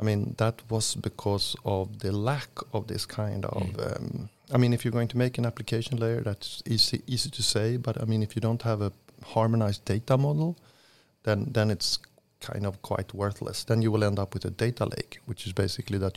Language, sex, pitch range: English, male, 100-120 Hz